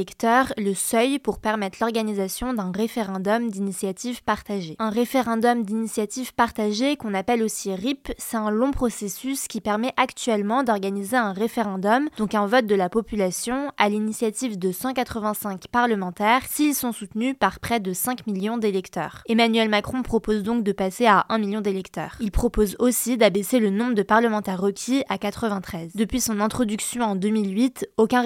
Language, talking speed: French, 155 wpm